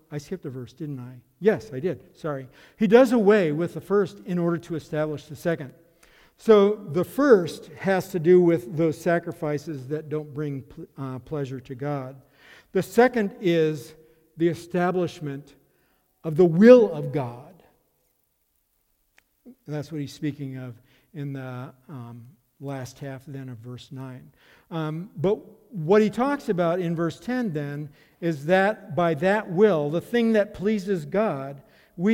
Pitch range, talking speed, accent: 140-175 Hz, 155 wpm, American